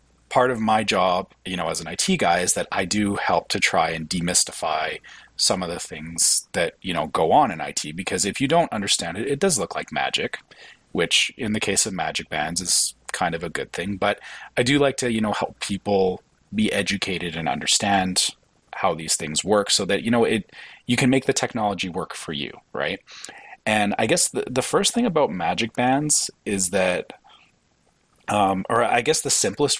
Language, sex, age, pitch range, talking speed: English, male, 30-49, 95-130 Hz, 205 wpm